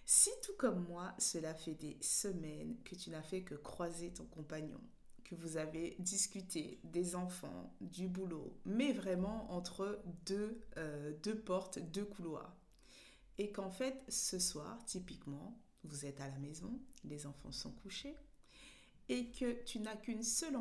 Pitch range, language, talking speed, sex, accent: 165-230 Hz, French, 155 wpm, female, French